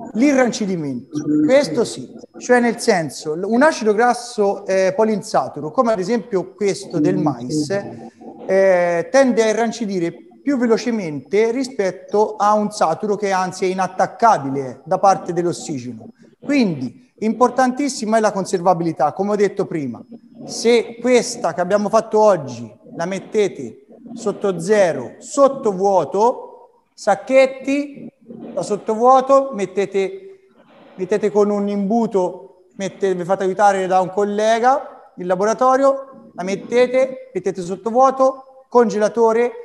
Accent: native